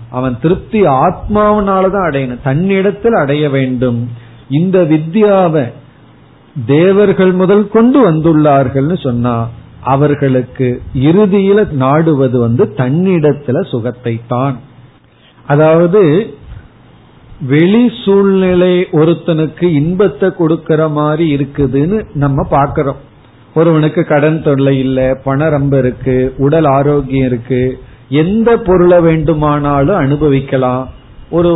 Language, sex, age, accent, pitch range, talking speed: Tamil, male, 40-59, native, 130-175 Hz, 80 wpm